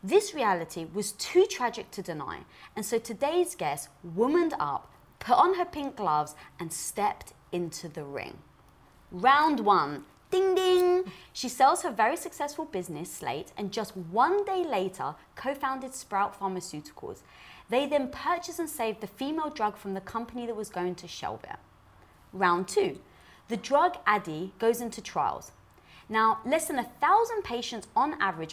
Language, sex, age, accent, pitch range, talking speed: English, female, 20-39, British, 185-290 Hz, 155 wpm